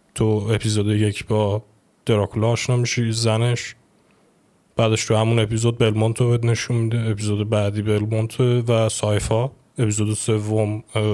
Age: 20-39